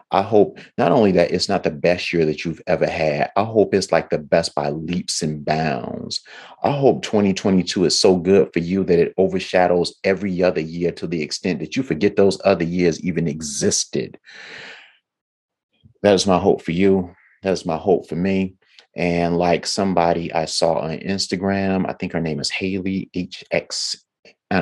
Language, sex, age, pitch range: English, male, 30-49, 85-100 Hz